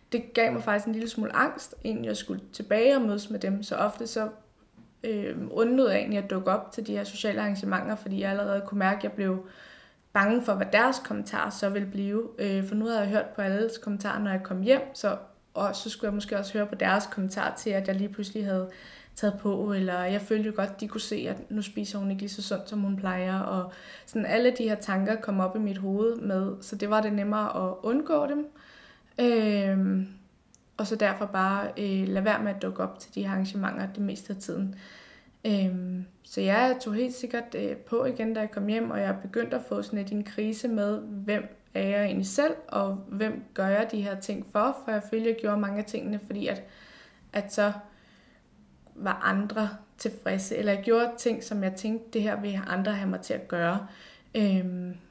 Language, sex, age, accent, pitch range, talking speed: Danish, female, 20-39, native, 195-220 Hz, 225 wpm